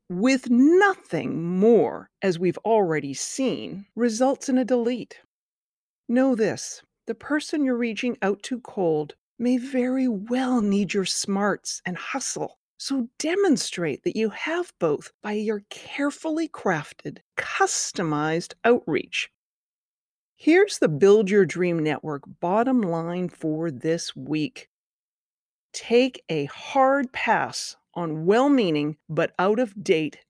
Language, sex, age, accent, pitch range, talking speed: English, female, 40-59, American, 165-255 Hz, 115 wpm